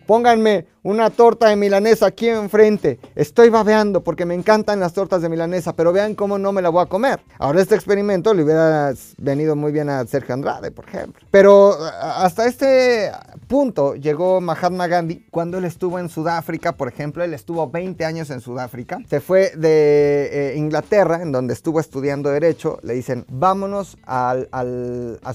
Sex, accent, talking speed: male, Mexican, 170 wpm